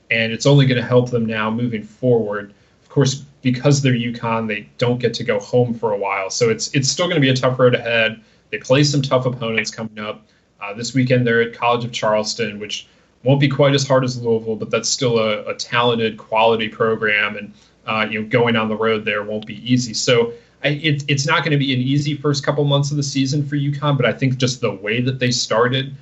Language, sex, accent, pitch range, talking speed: English, male, American, 110-140 Hz, 240 wpm